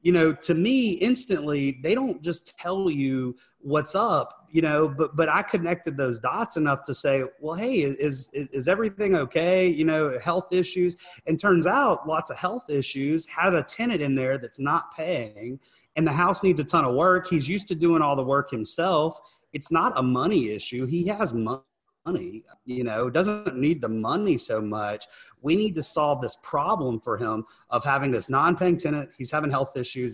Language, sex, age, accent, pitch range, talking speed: English, male, 30-49, American, 130-165 Hz, 195 wpm